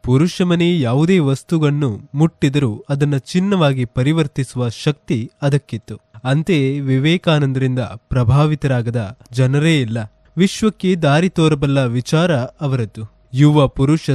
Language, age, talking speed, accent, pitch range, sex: Kannada, 20-39, 90 wpm, native, 125-160 Hz, male